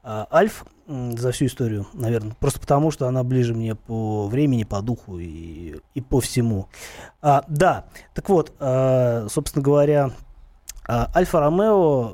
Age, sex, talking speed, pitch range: 30-49, male, 130 wpm, 125-155 Hz